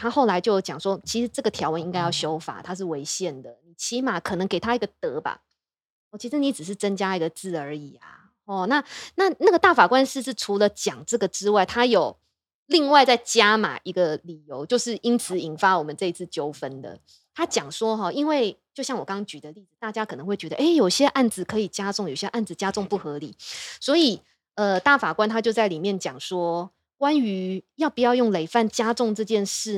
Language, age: Chinese, 20-39